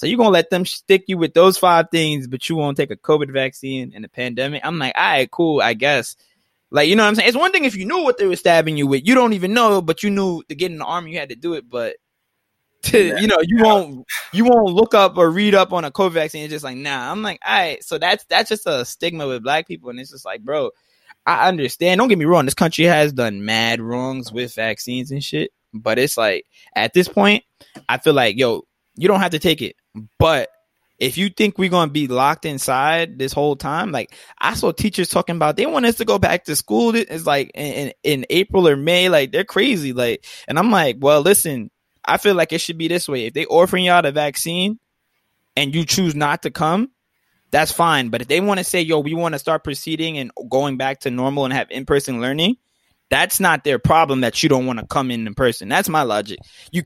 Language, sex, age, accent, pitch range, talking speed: English, male, 20-39, American, 140-195 Hz, 250 wpm